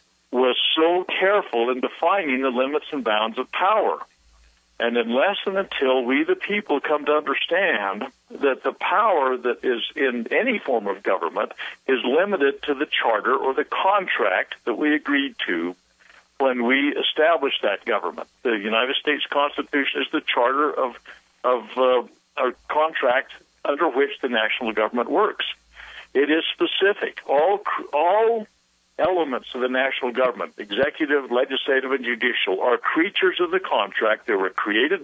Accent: American